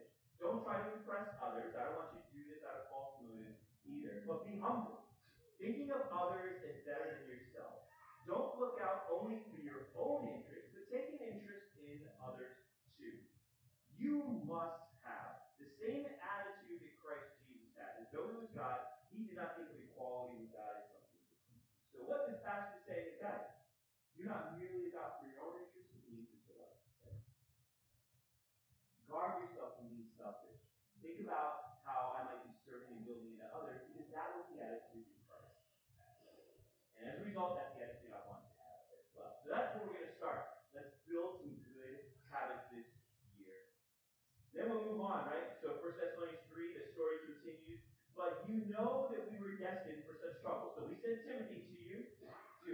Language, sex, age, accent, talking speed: English, male, 30-49, American, 180 wpm